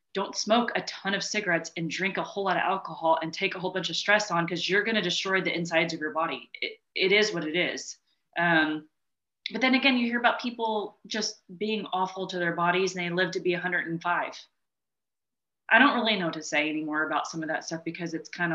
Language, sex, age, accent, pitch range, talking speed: English, female, 30-49, American, 165-210 Hz, 235 wpm